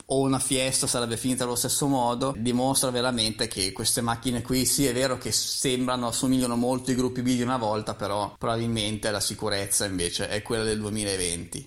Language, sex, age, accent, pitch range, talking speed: Italian, male, 20-39, native, 105-125 Hz, 180 wpm